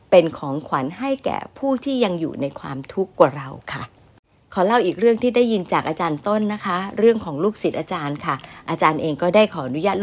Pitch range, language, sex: 165-220 Hz, Thai, female